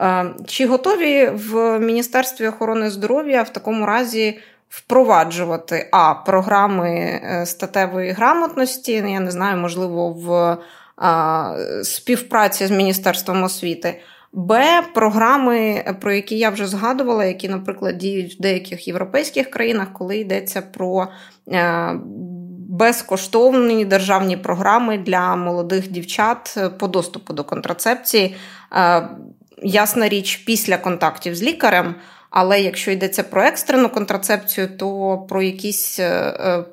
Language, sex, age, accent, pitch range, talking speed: Ukrainian, female, 20-39, native, 180-225 Hz, 110 wpm